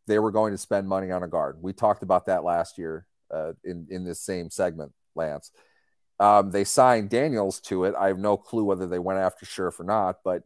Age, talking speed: 30-49, 230 wpm